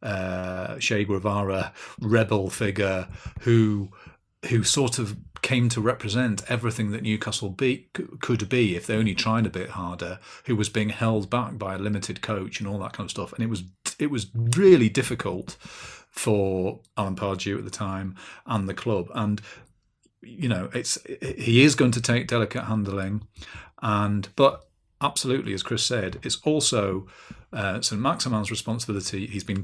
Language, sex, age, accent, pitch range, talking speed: English, male, 40-59, British, 100-120 Hz, 165 wpm